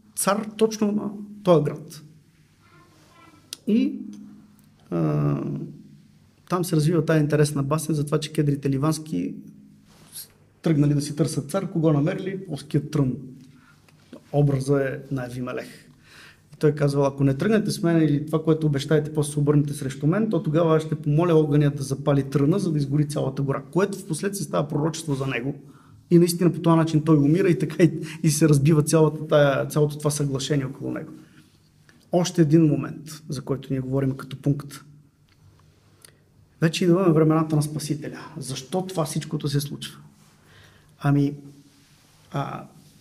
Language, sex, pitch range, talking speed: Bulgarian, male, 145-170 Hz, 150 wpm